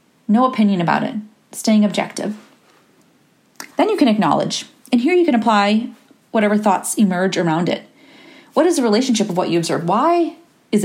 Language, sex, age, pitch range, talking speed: English, female, 30-49, 200-270 Hz, 165 wpm